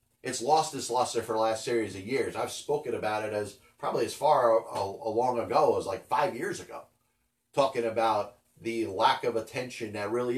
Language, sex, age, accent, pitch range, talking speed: English, male, 30-49, American, 115-155 Hz, 195 wpm